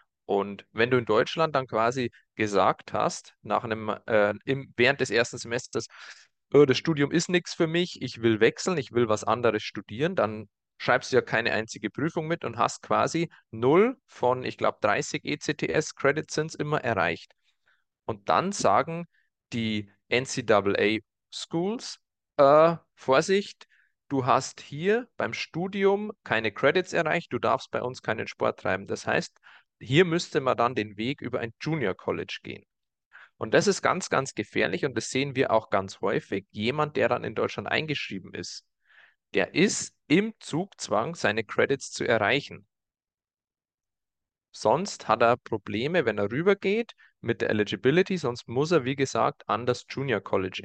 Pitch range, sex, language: 110-165 Hz, male, German